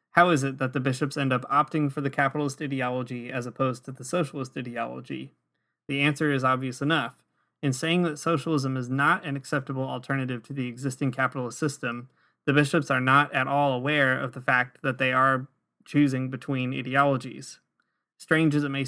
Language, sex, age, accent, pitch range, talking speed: English, male, 20-39, American, 125-145 Hz, 185 wpm